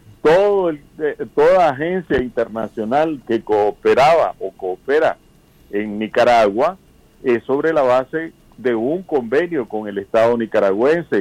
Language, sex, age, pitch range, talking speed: Spanish, male, 50-69, 115-165 Hz, 120 wpm